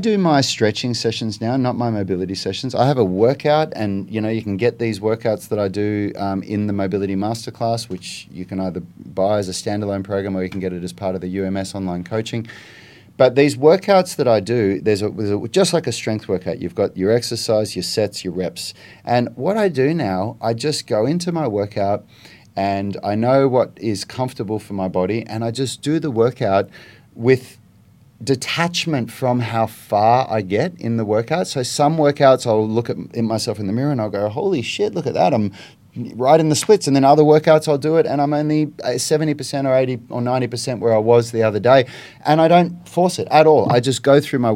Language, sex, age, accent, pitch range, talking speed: English, male, 30-49, Australian, 105-140 Hz, 220 wpm